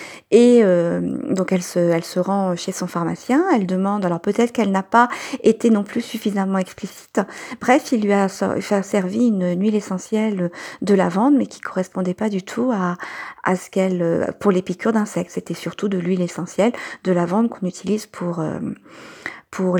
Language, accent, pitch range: French, French, 175-220 Hz